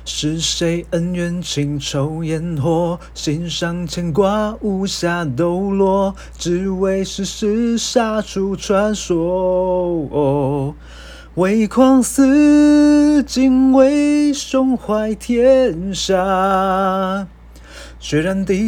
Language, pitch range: Chinese, 190-300 Hz